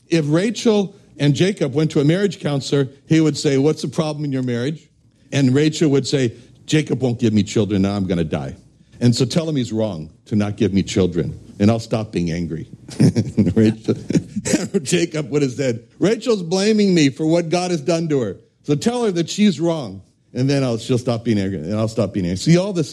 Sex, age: male, 60-79